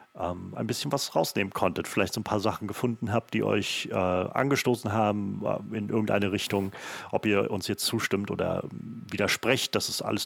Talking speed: 175 wpm